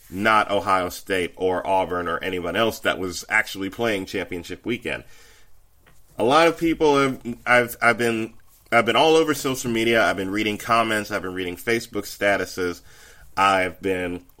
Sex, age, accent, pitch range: male, 30-49, American, 95-120 Hz